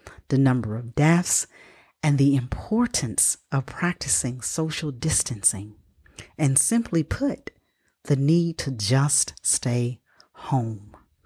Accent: American